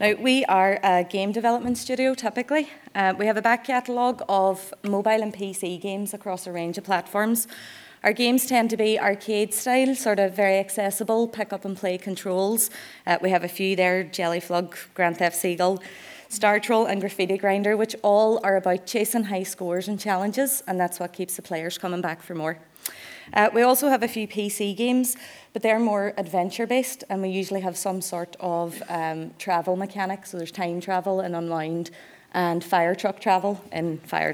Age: 20-39